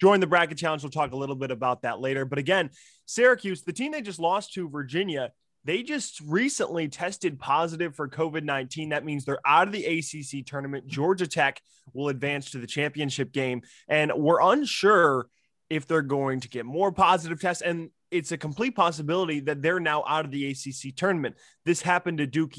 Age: 20-39